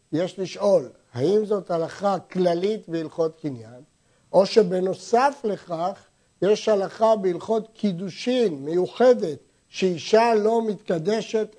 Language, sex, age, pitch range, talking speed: Hebrew, male, 60-79, 170-215 Hz, 100 wpm